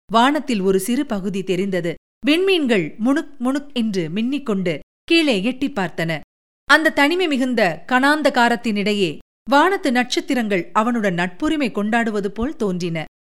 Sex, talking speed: female, 110 wpm